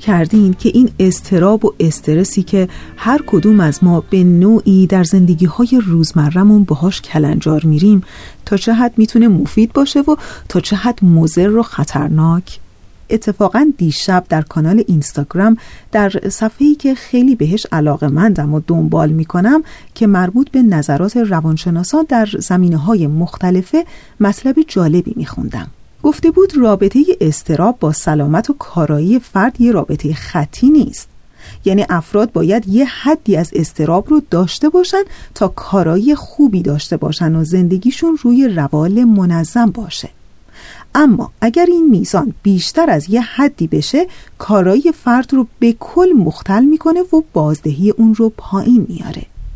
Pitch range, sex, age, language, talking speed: 170-245 Hz, female, 40-59, Persian, 140 wpm